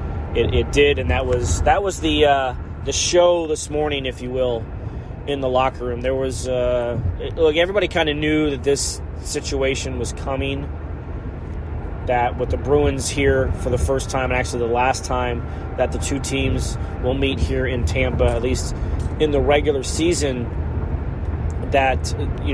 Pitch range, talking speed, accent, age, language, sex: 90-145 Hz, 175 wpm, American, 30-49, English, male